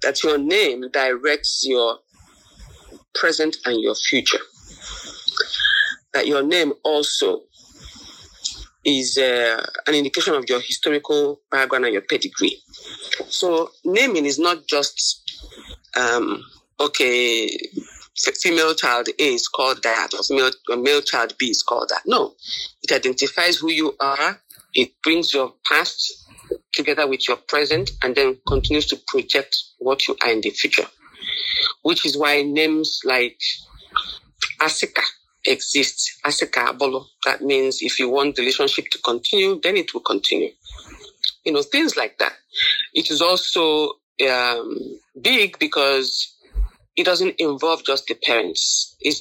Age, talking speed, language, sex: 40-59, 135 wpm, English, male